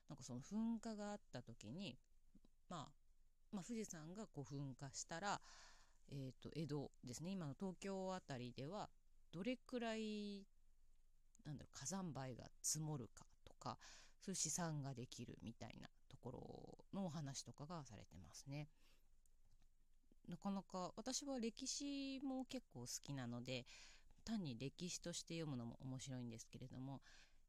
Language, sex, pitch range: Japanese, female, 125-190 Hz